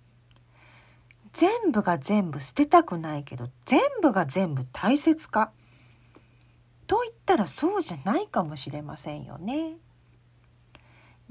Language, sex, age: Japanese, female, 40-59